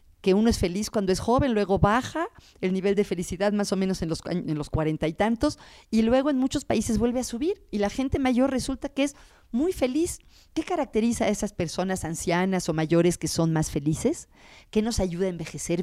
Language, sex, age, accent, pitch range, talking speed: Spanish, female, 40-59, Mexican, 165-210 Hz, 210 wpm